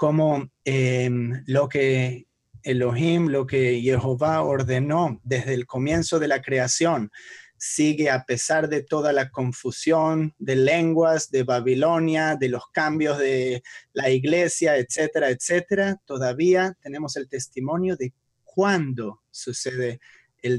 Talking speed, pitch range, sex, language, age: 120 wpm, 125-155 Hz, male, English, 30-49